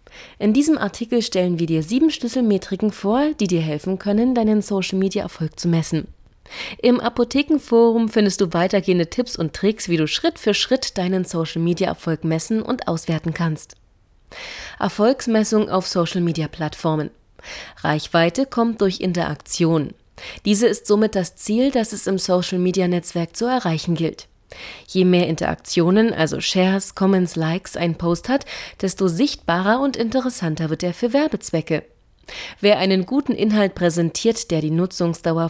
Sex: female